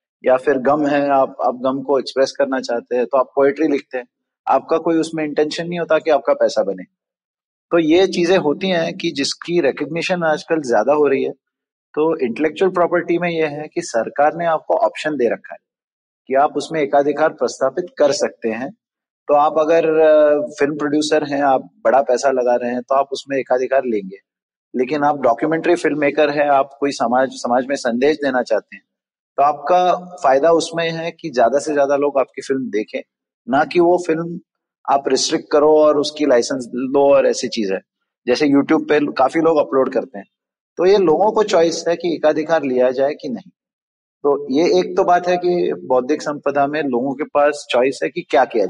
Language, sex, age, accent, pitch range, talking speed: Hindi, male, 30-49, native, 135-165 Hz, 195 wpm